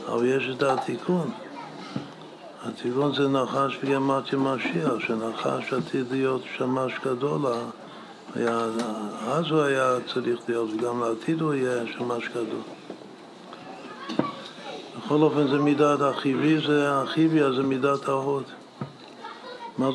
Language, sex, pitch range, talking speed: Hebrew, male, 120-135 Hz, 115 wpm